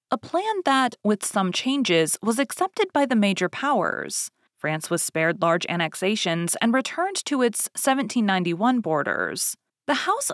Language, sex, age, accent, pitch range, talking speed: English, female, 30-49, American, 175-260 Hz, 145 wpm